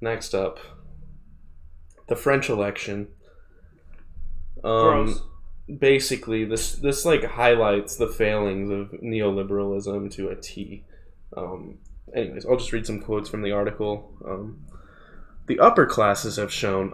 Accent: American